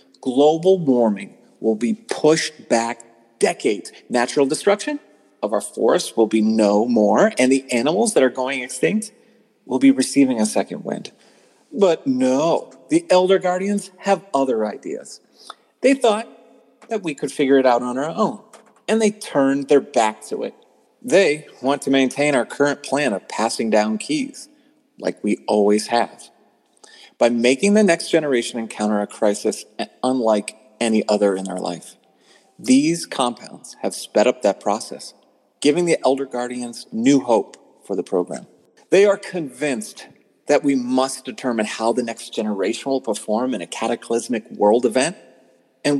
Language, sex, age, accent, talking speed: English, male, 40-59, American, 155 wpm